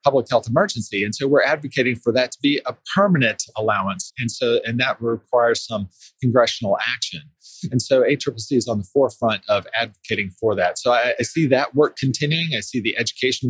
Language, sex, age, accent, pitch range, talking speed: English, male, 30-49, American, 115-145 Hz, 195 wpm